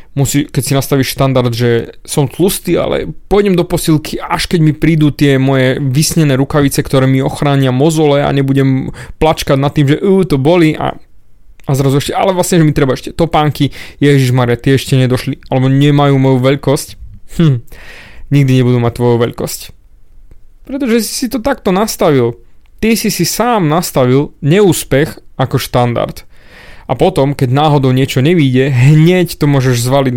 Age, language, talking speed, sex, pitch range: 20-39, Slovak, 160 wpm, male, 130-180 Hz